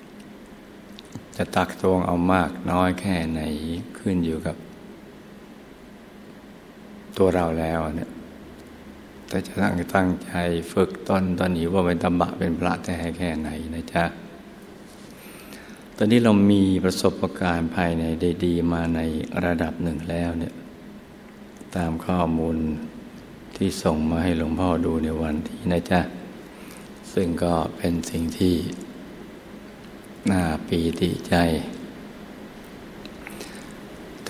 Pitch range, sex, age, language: 80-90 Hz, male, 60-79, Thai